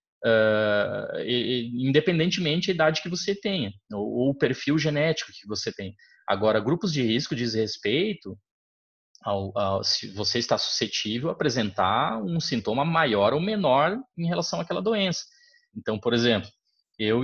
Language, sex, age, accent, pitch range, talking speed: Portuguese, male, 20-39, Brazilian, 110-170 Hz, 145 wpm